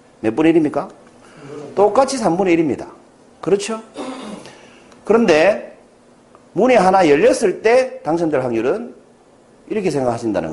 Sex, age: male, 40-59